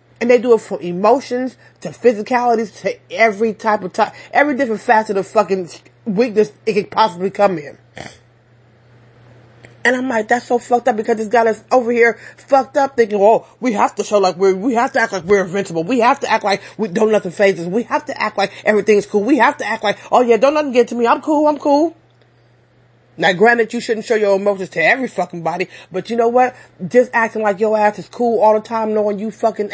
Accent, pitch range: American, 180-240 Hz